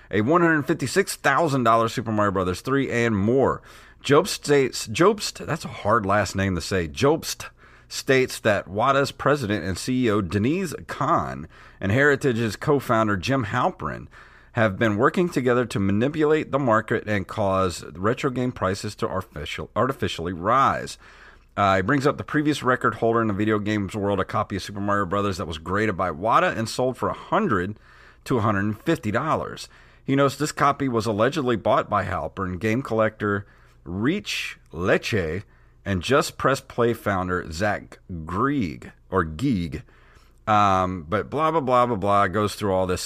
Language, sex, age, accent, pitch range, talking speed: English, male, 40-59, American, 100-135 Hz, 165 wpm